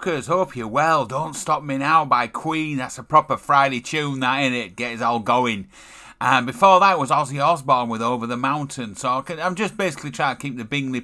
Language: English